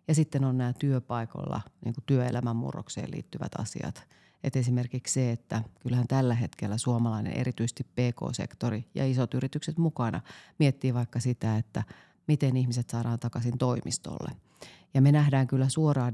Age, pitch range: 40-59, 115-135 Hz